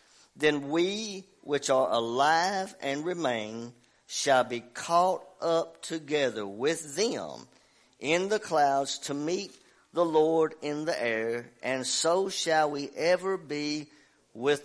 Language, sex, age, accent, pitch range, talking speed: English, male, 50-69, American, 125-150 Hz, 125 wpm